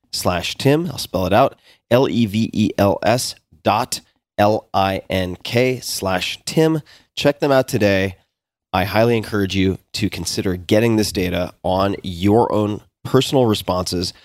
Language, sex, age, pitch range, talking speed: English, male, 30-49, 90-120 Hz, 120 wpm